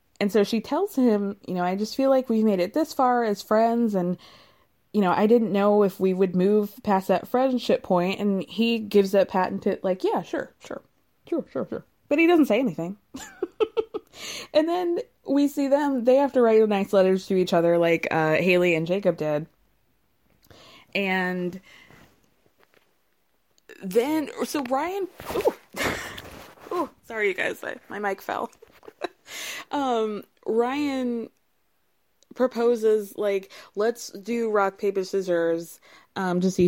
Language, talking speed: English, 150 wpm